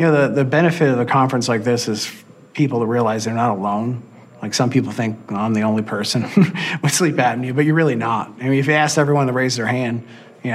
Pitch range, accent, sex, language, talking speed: 115-145 Hz, American, male, English, 250 wpm